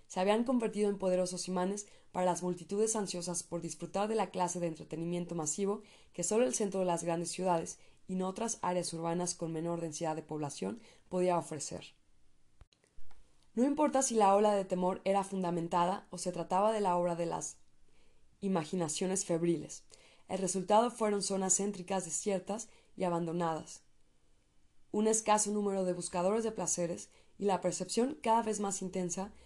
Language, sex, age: Spanish, female, 20-39